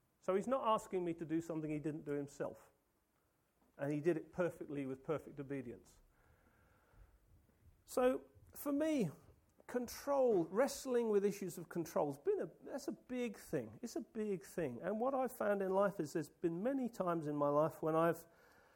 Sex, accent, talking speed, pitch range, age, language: male, British, 175 wpm, 145-200 Hz, 40-59, English